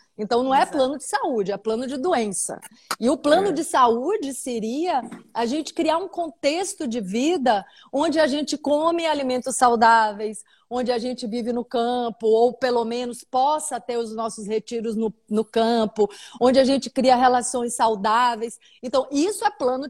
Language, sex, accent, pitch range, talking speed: Portuguese, female, Brazilian, 225-290 Hz, 170 wpm